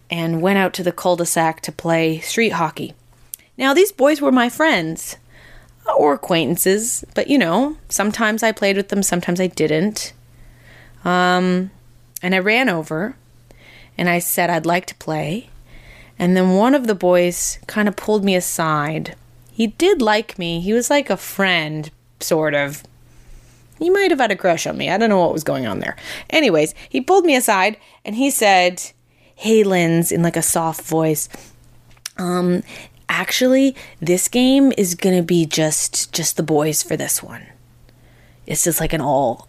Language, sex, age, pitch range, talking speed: English, female, 20-39, 145-210 Hz, 175 wpm